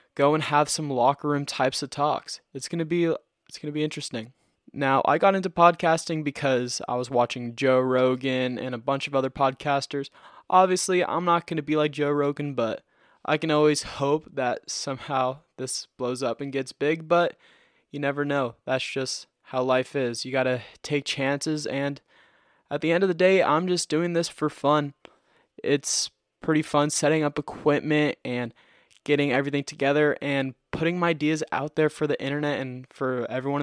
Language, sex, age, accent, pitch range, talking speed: English, male, 20-39, American, 130-160 Hz, 190 wpm